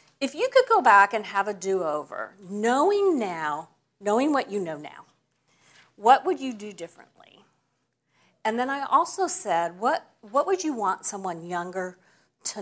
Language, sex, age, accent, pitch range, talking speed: English, female, 50-69, American, 180-255 Hz, 160 wpm